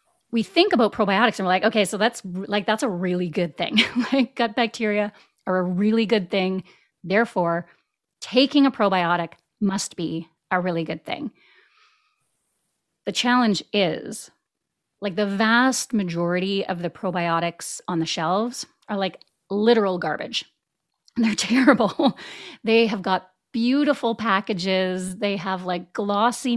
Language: English